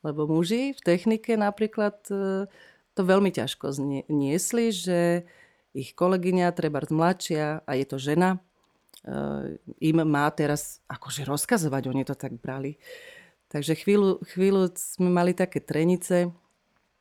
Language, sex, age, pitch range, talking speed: Slovak, female, 30-49, 140-175 Hz, 120 wpm